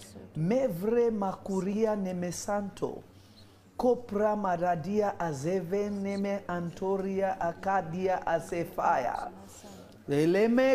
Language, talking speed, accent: English, 65 wpm, South African